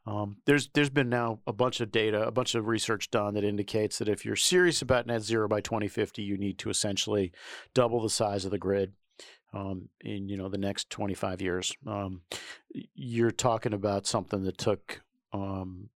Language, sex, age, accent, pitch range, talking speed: English, male, 50-69, American, 100-115 Hz, 190 wpm